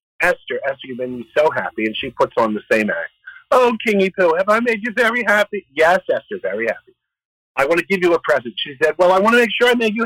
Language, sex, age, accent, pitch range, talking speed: English, male, 50-69, American, 155-260 Hz, 270 wpm